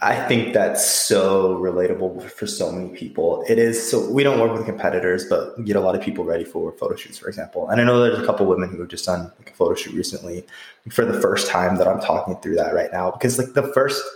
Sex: male